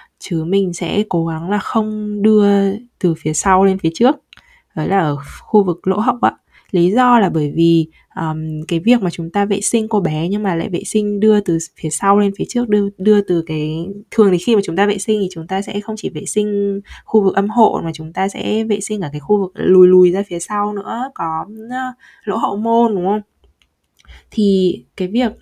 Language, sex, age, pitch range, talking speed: Vietnamese, female, 20-39, 170-215 Hz, 230 wpm